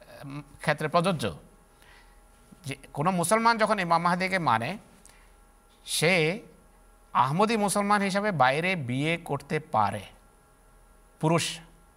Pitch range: 125-180 Hz